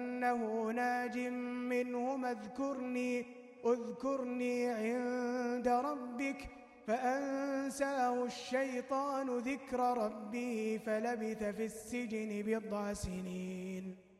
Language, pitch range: Arabic, 230-275 Hz